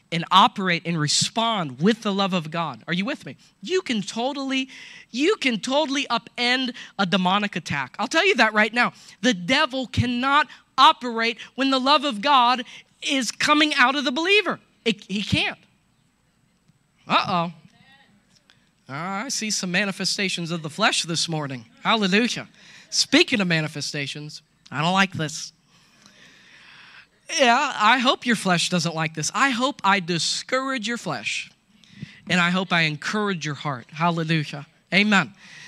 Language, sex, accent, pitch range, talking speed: English, male, American, 175-245 Hz, 150 wpm